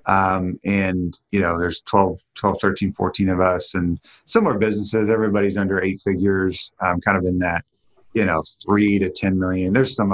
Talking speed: 185 wpm